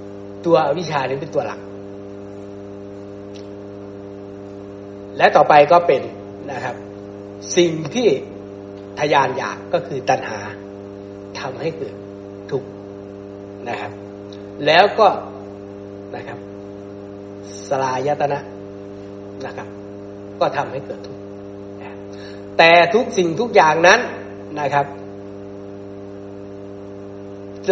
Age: 60-79